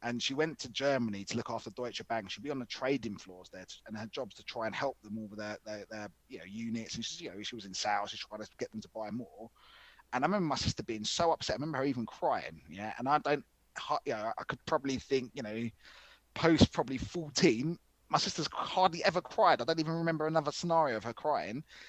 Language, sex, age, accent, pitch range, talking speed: English, male, 20-39, British, 115-155 Hz, 250 wpm